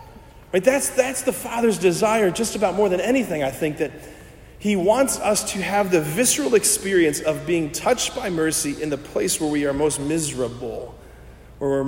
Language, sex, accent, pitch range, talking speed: English, male, American, 130-180 Hz, 185 wpm